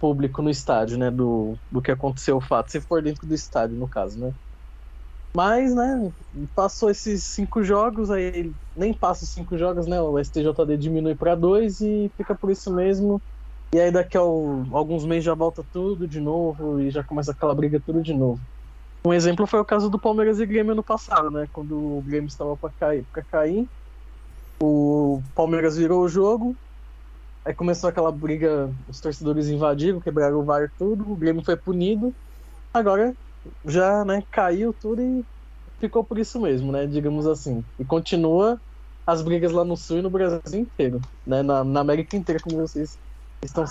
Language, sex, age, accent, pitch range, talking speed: English, male, 20-39, Brazilian, 145-195 Hz, 180 wpm